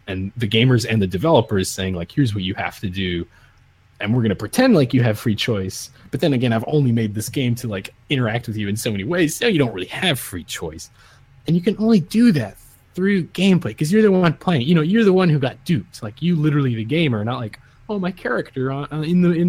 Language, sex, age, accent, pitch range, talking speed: English, male, 20-39, American, 100-150 Hz, 255 wpm